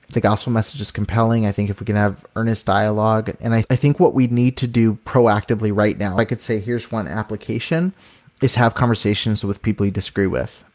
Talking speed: 210 wpm